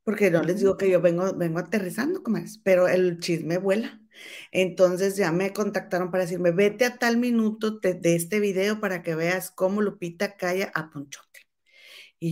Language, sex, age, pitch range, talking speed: Spanish, female, 30-49, 170-205 Hz, 180 wpm